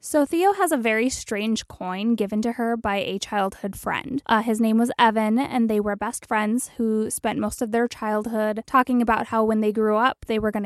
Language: English